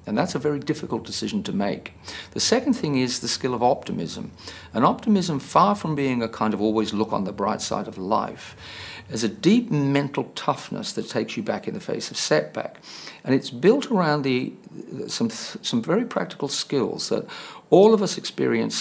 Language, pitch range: English, 110-175 Hz